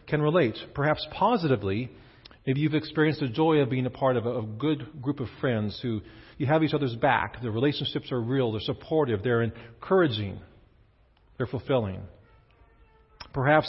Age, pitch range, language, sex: 40-59, 110-150 Hz, English, male